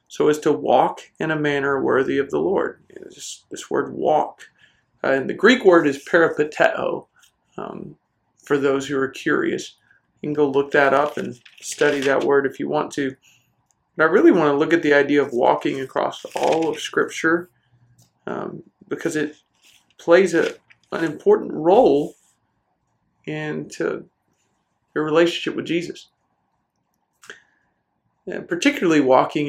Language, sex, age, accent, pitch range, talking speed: English, male, 40-59, American, 140-170 Hz, 140 wpm